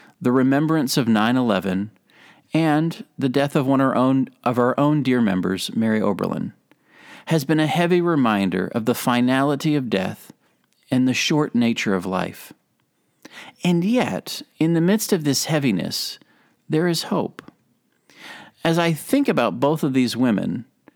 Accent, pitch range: American, 115-160 Hz